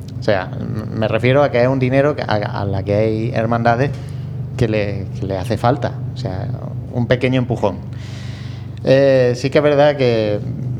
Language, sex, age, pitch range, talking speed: Spanish, male, 30-49, 110-135 Hz, 170 wpm